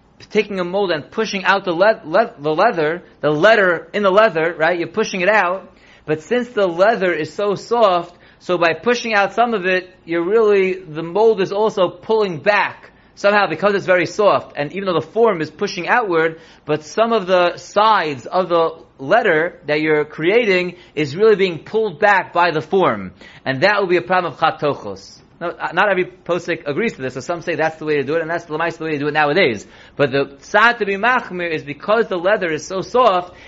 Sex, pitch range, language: male, 165-205 Hz, English